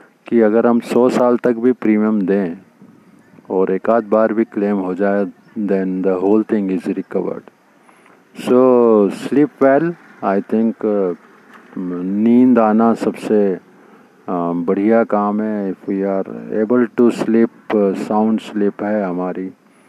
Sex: male